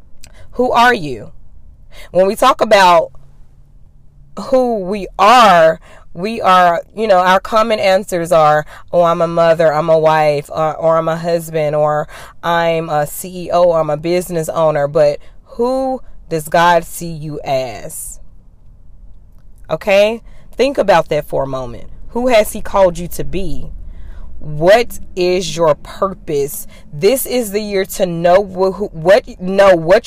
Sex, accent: female, American